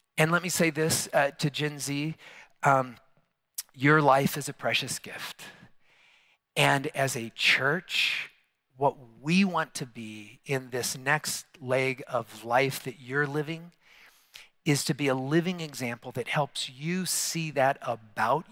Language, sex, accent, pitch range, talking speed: English, male, American, 125-160 Hz, 150 wpm